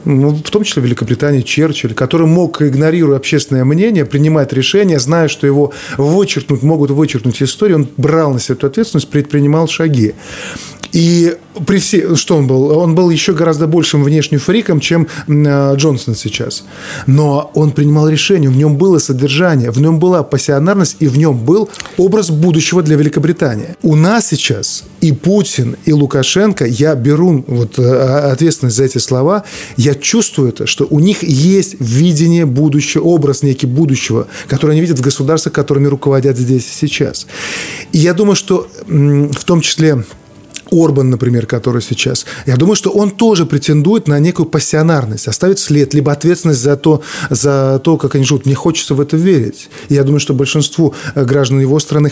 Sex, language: male, Russian